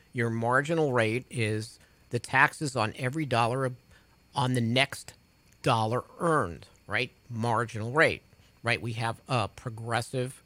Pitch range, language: 110-145 Hz, English